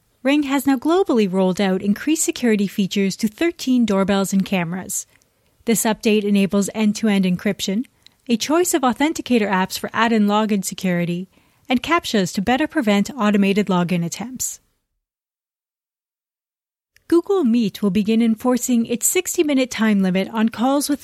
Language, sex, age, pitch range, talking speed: English, female, 30-49, 205-265 Hz, 135 wpm